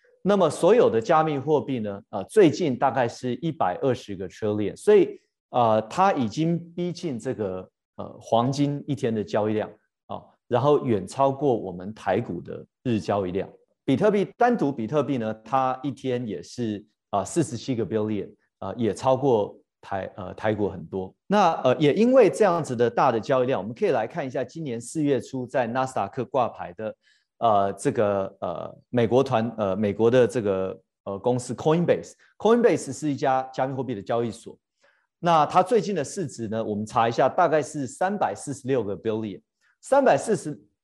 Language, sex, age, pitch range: Chinese, male, 30-49, 110-155 Hz